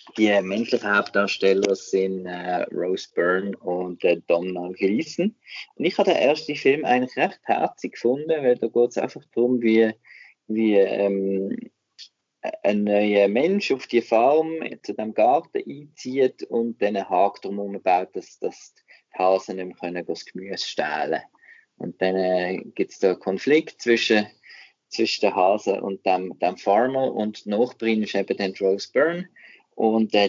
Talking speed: 160 wpm